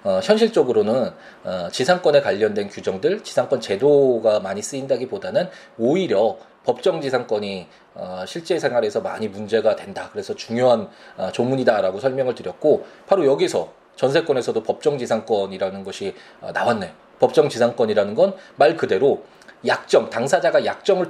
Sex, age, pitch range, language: male, 20-39, 120-195 Hz, Korean